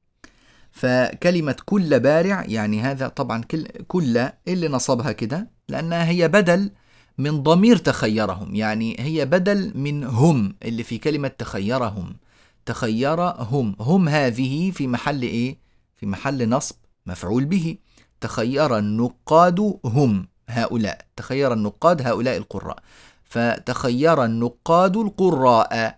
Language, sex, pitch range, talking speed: Arabic, male, 115-165 Hz, 110 wpm